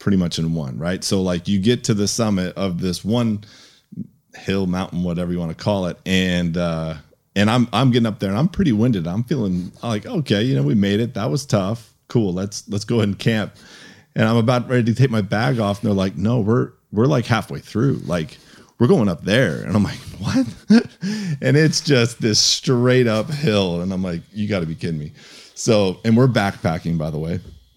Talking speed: 225 wpm